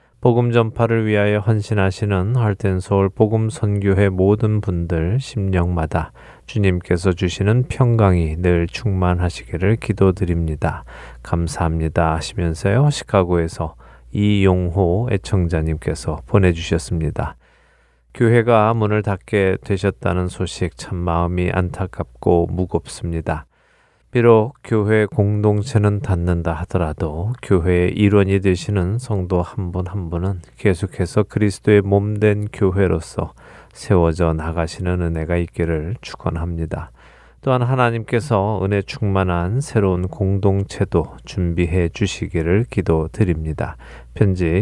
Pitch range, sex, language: 85-105 Hz, male, Korean